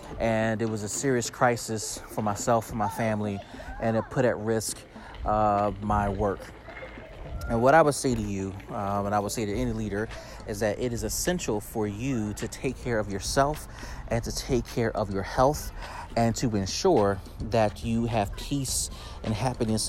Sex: male